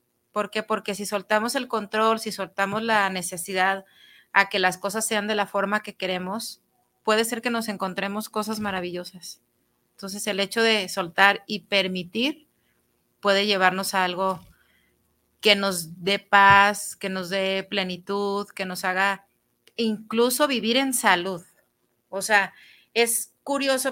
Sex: female